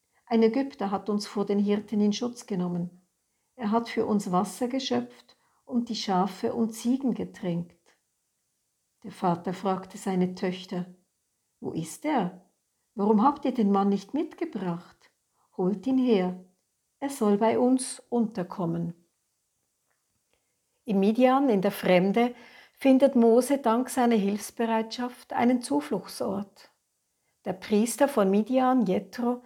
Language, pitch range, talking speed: German, 190-240 Hz, 125 wpm